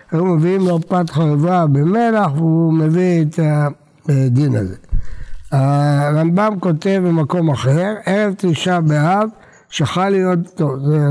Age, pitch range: 60-79, 145-190 Hz